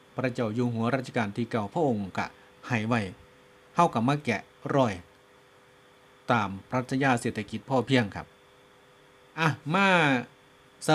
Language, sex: Thai, male